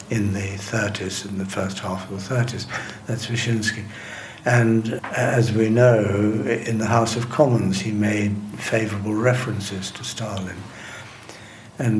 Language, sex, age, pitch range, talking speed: English, male, 60-79, 105-120 Hz, 140 wpm